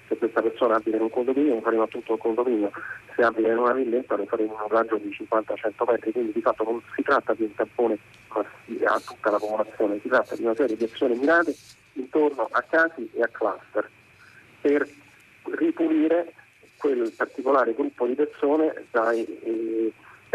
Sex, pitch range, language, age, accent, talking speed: male, 110-170 Hz, Italian, 40-59, native, 175 wpm